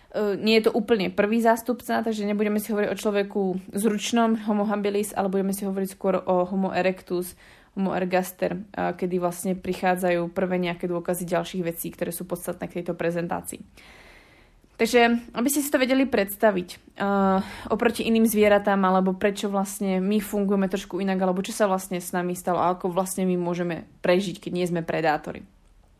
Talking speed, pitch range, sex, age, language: 165 wpm, 180-205 Hz, female, 20-39, Slovak